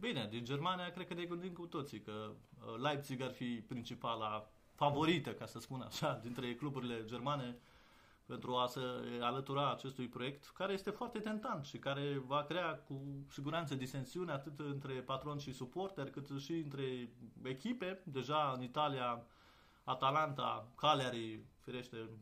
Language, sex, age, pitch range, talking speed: Romanian, male, 30-49, 125-165 Hz, 145 wpm